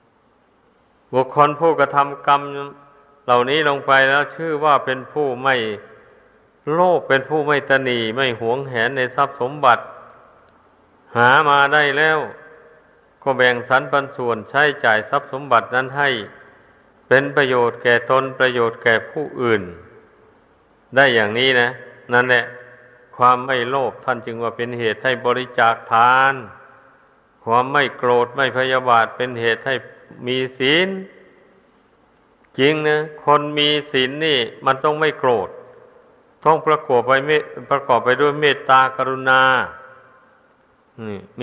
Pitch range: 125-145 Hz